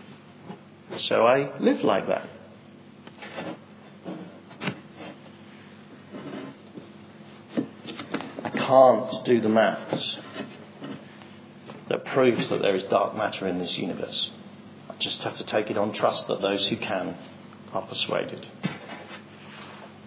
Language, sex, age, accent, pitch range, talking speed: English, male, 50-69, British, 125-210 Hz, 100 wpm